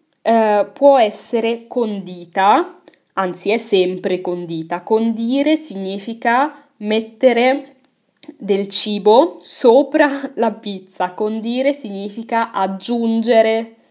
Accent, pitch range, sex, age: native, 190-260 Hz, female, 20-39